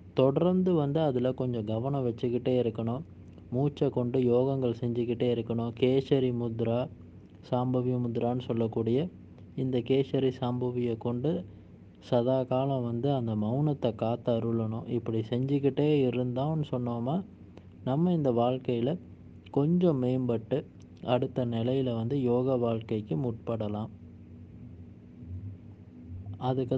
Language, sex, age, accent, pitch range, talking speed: Tamil, male, 20-39, native, 115-135 Hz, 100 wpm